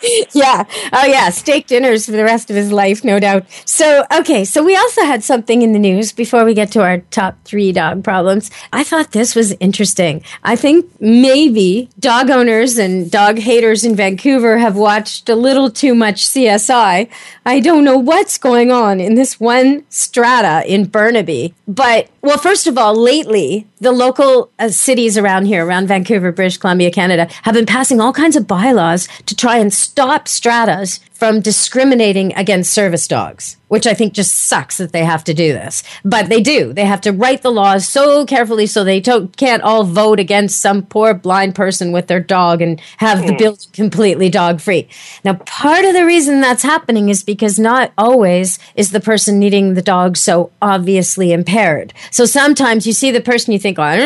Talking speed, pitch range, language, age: 195 wpm, 190-245 Hz, English, 40-59